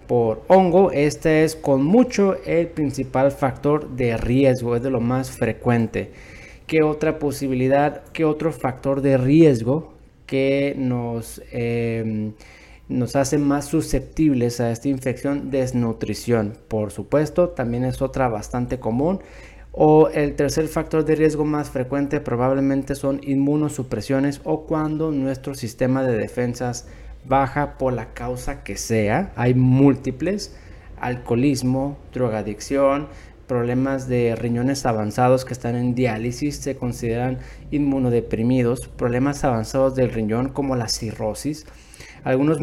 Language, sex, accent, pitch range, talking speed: Spanish, male, Mexican, 120-145 Hz, 125 wpm